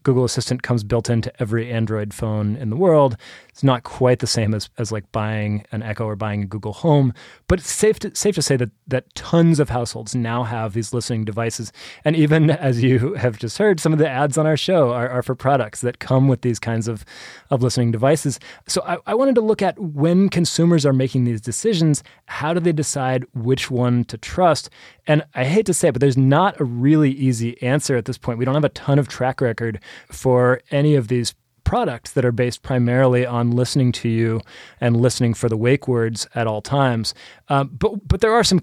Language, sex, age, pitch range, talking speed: English, male, 20-39, 120-150 Hz, 225 wpm